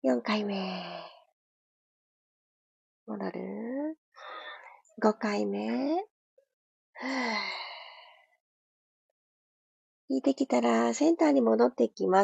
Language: Japanese